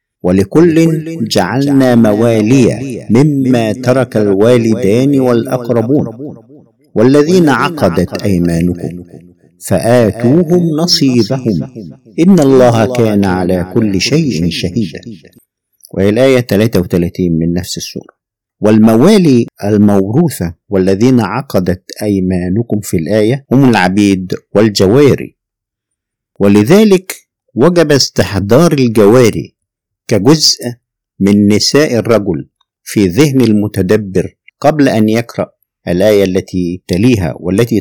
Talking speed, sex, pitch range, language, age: 85 wpm, male, 95-135 Hz, Arabic, 50-69